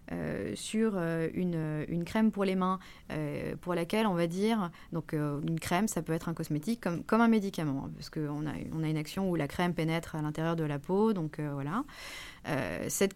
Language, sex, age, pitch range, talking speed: French, female, 30-49, 170-215 Hz, 230 wpm